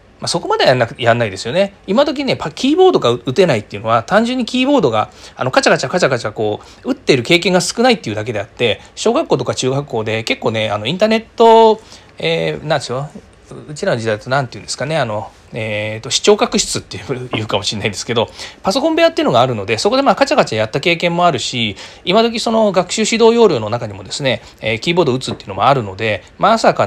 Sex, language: male, Japanese